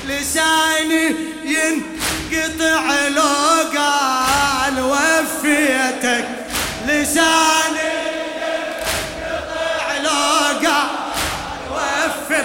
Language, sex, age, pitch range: Arabic, male, 20-39, 245-310 Hz